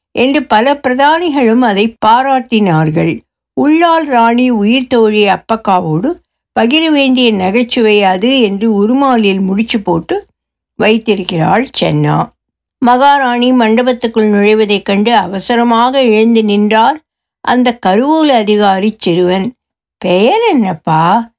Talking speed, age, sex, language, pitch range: 95 wpm, 60-79, female, Tamil, 185-250 Hz